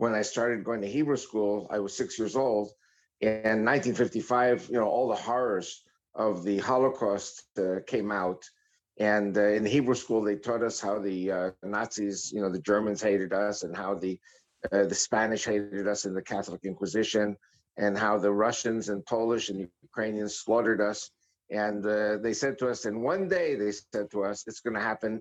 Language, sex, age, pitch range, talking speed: English, male, 50-69, 100-120 Hz, 195 wpm